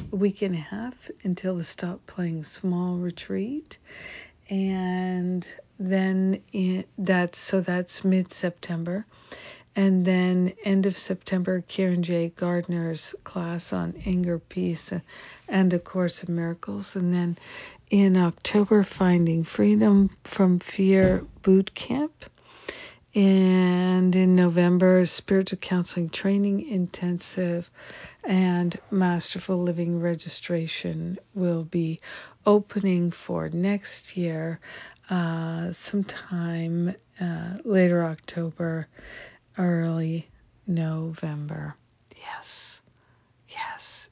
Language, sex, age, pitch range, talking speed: English, female, 60-79, 170-190 Hz, 95 wpm